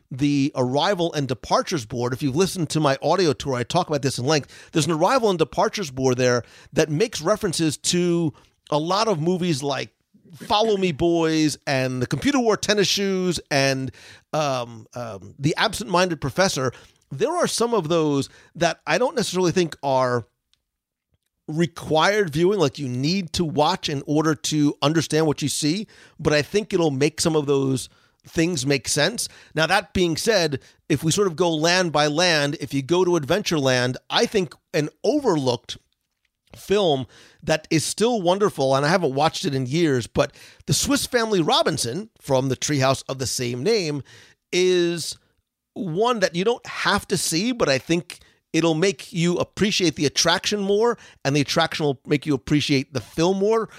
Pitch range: 135-185 Hz